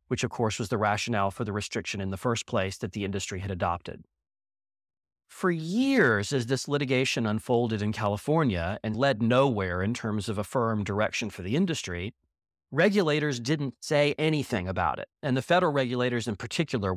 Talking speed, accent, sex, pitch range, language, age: 175 wpm, American, male, 100-140 Hz, English, 30-49